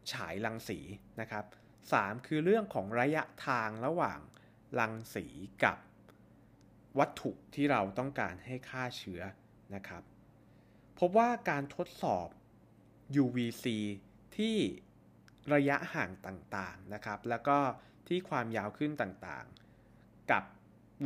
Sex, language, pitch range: male, Thai, 100-130 Hz